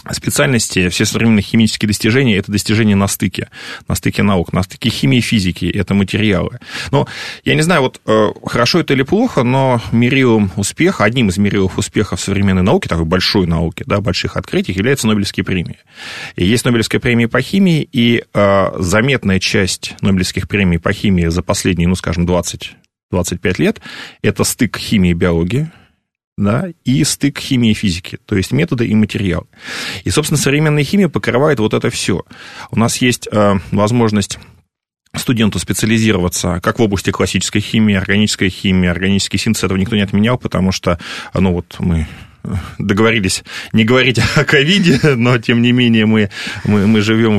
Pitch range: 95-120 Hz